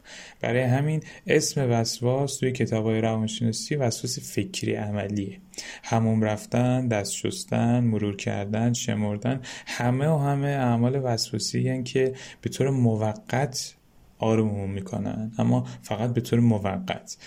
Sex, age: male, 10-29